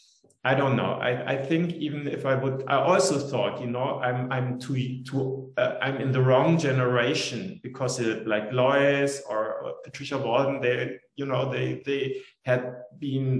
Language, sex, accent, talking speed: English, male, German, 175 wpm